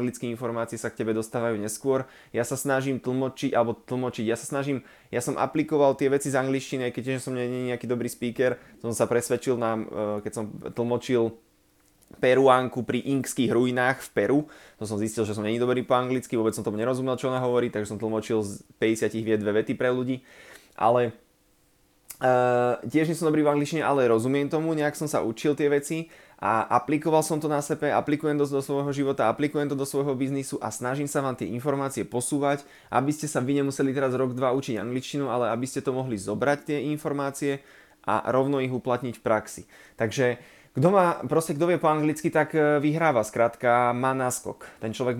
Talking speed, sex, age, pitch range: 195 wpm, male, 20-39, 120-140 Hz